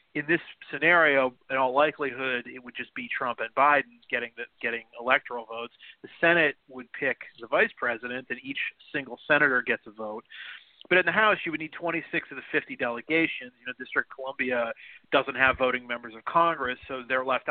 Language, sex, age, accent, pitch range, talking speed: English, male, 40-59, American, 120-145 Hz, 200 wpm